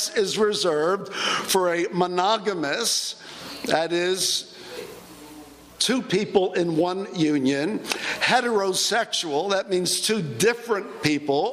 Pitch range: 185-235 Hz